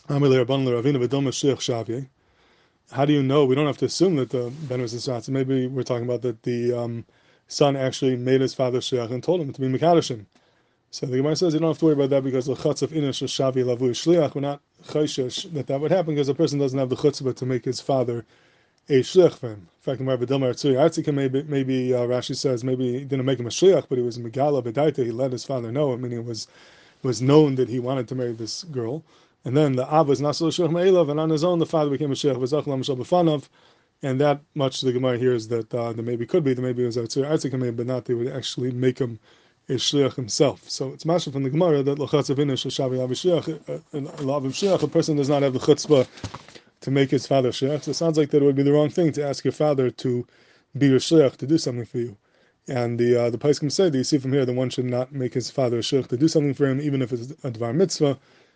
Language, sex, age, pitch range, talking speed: English, male, 20-39, 125-150 Hz, 240 wpm